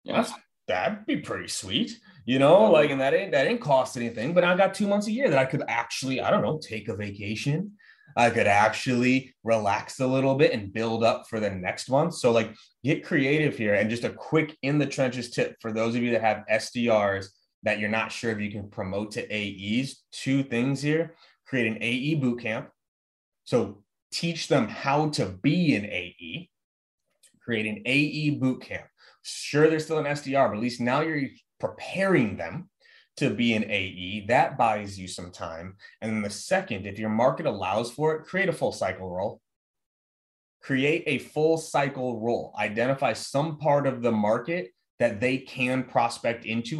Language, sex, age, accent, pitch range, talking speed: English, male, 30-49, American, 105-145 Hz, 190 wpm